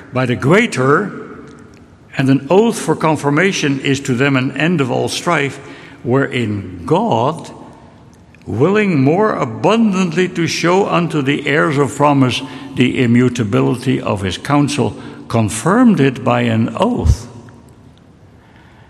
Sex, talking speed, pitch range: male, 120 wpm, 105-145 Hz